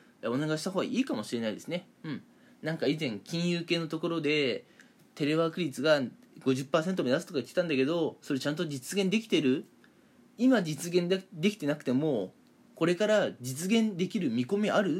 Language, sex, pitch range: Japanese, male, 145-210 Hz